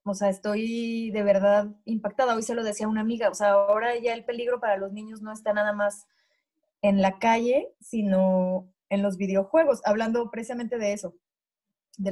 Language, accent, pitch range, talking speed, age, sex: Spanish, Mexican, 200-240 Hz, 185 wpm, 20-39, female